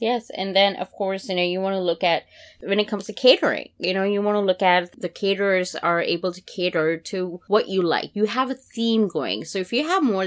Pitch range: 170-210 Hz